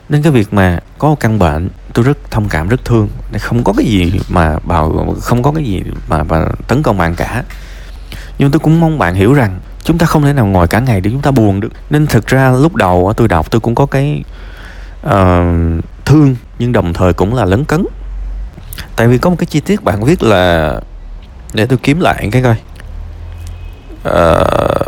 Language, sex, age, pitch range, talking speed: Vietnamese, male, 20-39, 85-115 Hz, 205 wpm